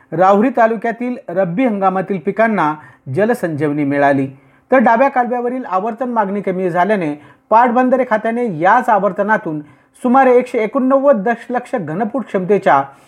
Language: Marathi